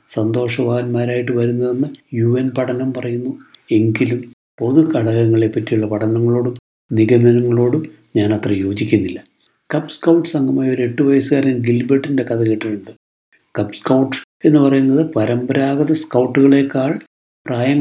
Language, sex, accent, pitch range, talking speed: Malayalam, male, native, 115-140 Hz, 95 wpm